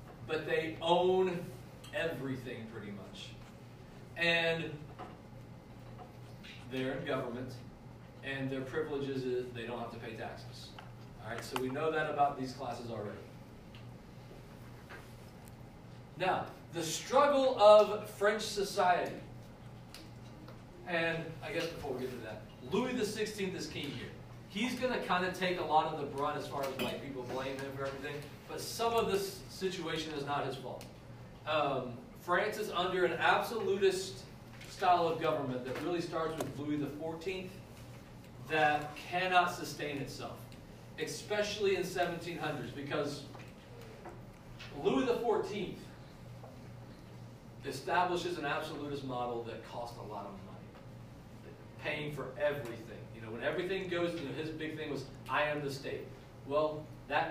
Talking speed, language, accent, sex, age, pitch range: 135 wpm, English, American, male, 40-59, 125-170 Hz